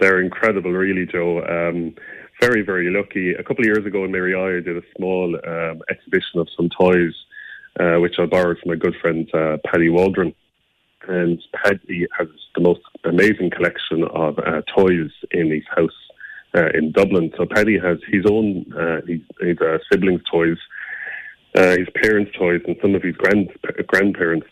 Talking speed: 180 wpm